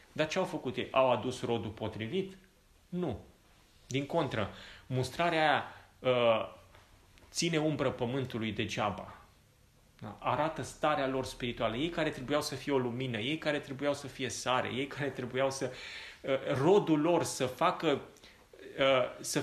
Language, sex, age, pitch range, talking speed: Romanian, male, 30-49, 110-155 Hz, 135 wpm